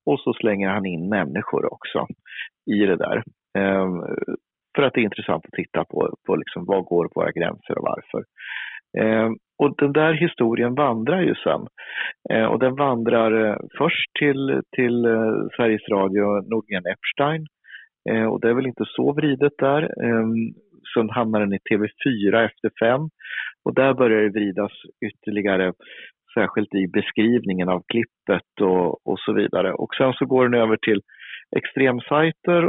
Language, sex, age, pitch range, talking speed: Swedish, male, 40-59, 100-125 Hz, 160 wpm